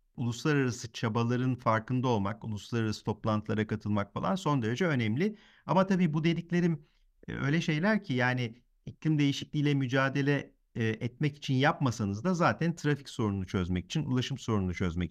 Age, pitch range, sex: 50-69, 105-150 Hz, male